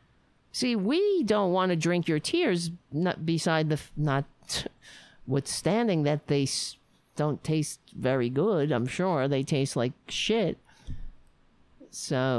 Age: 50-69